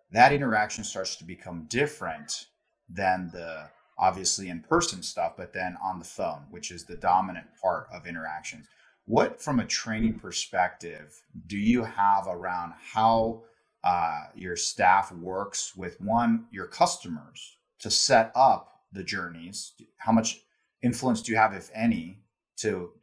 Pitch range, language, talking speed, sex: 95-115 Hz, English, 145 wpm, male